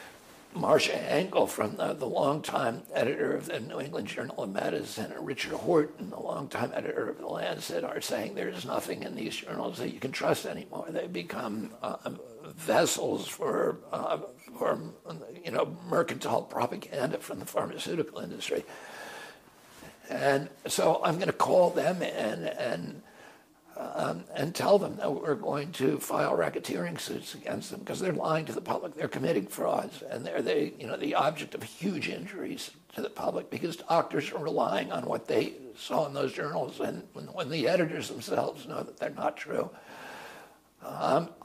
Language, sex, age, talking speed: English, male, 60-79, 170 wpm